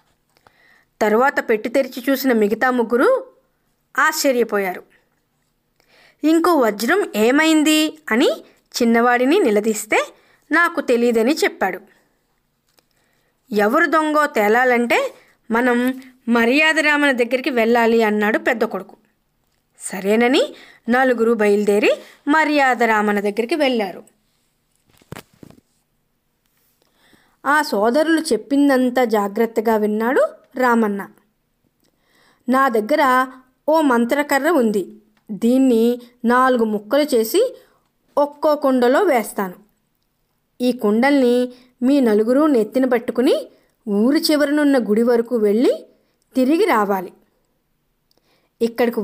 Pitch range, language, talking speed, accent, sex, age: 220-280 Hz, Telugu, 75 wpm, native, female, 20-39